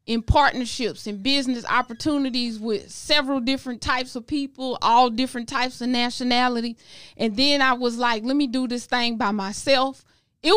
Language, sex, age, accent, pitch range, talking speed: English, female, 20-39, American, 250-325 Hz, 165 wpm